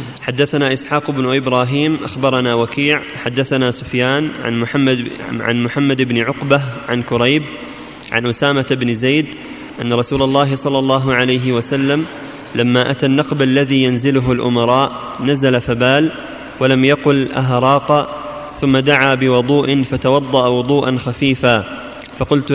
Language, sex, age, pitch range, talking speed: Arabic, male, 20-39, 130-140 Hz, 115 wpm